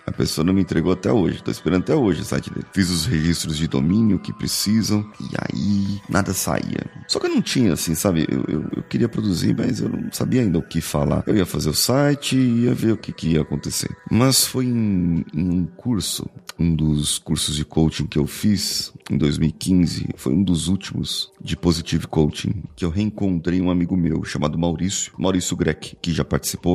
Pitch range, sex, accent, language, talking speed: 80-100 Hz, male, Brazilian, Portuguese, 210 wpm